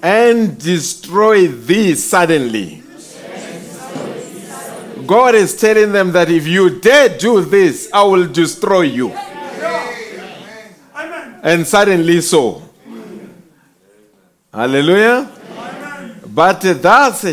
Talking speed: 85 wpm